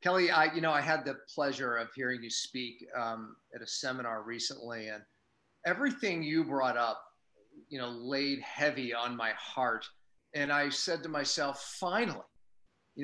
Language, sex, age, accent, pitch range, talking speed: English, male, 40-59, American, 125-155 Hz, 165 wpm